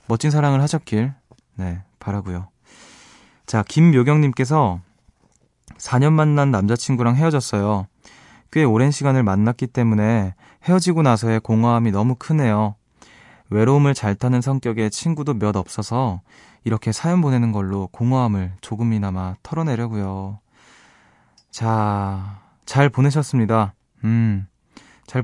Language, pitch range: Korean, 105-135 Hz